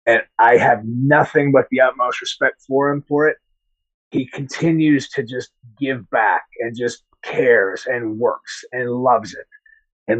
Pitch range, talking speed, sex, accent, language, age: 125-165 Hz, 160 wpm, male, American, English, 30-49